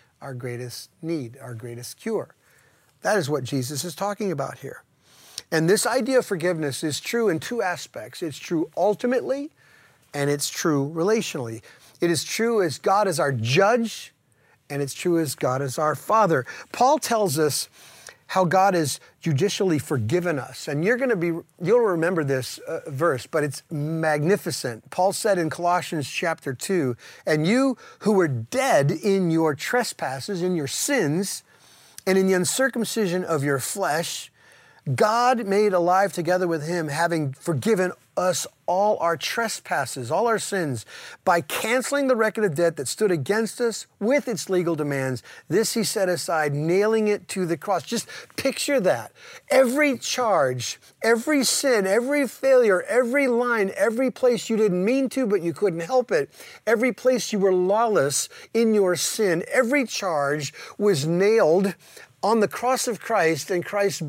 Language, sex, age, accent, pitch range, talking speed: English, male, 40-59, American, 155-225 Hz, 160 wpm